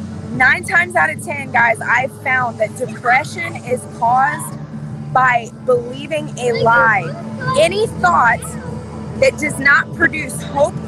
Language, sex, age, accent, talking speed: English, female, 20-39, American, 125 wpm